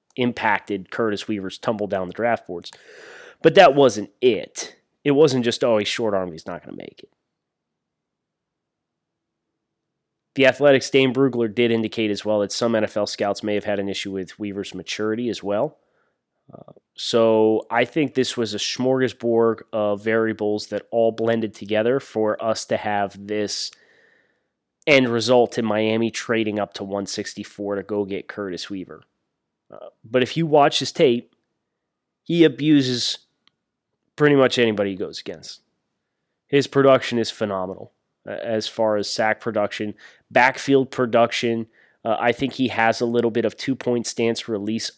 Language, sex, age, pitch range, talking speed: English, male, 30-49, 105-125 Hz, 155 wpm